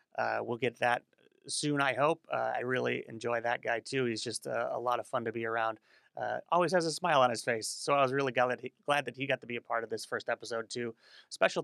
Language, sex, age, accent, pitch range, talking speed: English, male, 30-49, American, 115-145 Hz, 275 wpm